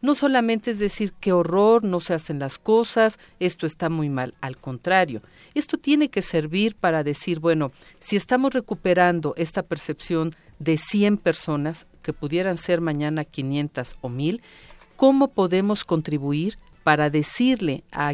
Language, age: Spanish, 40-59